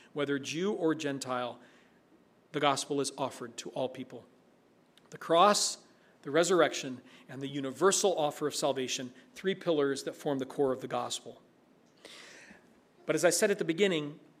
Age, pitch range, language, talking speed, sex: 40-59, 150-210 Hz, English, 155 wpm, male